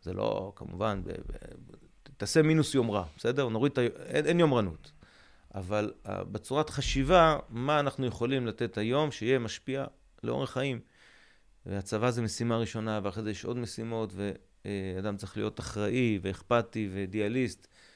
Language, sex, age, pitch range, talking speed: Hebrew, male, 30-49, 100-125 Hz, 130 wpm